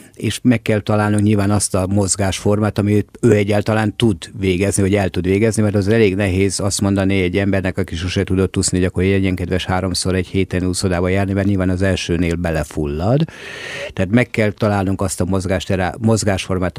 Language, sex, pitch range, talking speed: Hungarian, male, 90-110 Hz, 180 wpm